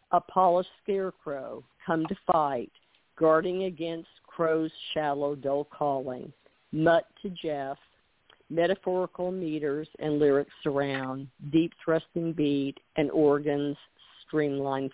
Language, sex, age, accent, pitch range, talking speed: English, female, 50-69, American, 145-175 Hz, 105 wpm